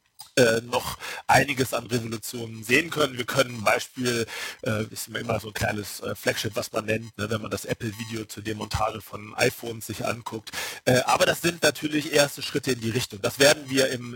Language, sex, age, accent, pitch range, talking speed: German, male, 40-59, German, 115-145 Hz, 195 wpm